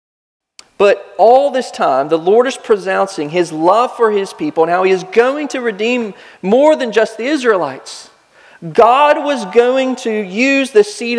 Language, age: English, 40-59